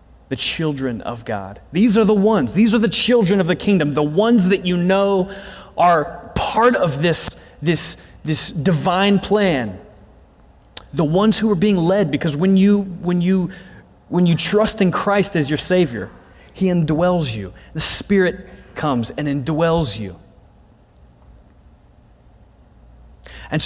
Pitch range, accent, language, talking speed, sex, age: 130-190 Hz, American, English, 145 wpm, male, 30-49